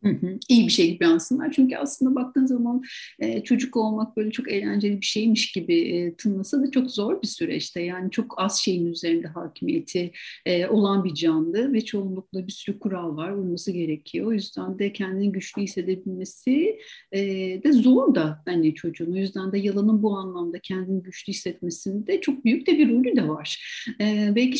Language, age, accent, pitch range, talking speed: Turkish, 60-79, native, 185-235 Hz, 190 wpm